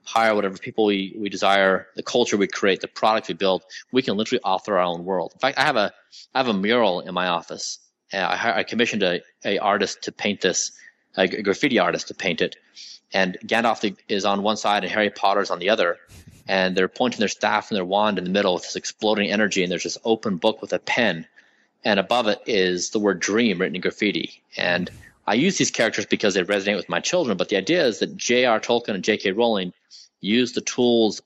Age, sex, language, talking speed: 30-49, male, English, 230 wpm